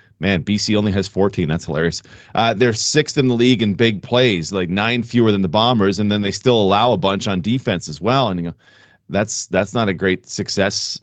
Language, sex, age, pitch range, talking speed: English, male, 40-59, 105-130 Hz, 230 wpm